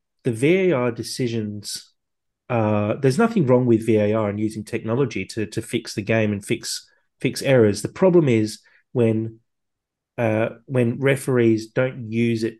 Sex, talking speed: male, 150 wpm